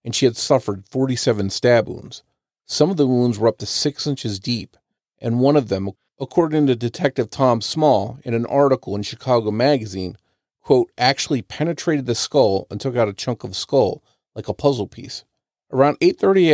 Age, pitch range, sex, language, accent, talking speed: 40-59, 110-135 Hz, male, English, American, 185 wpm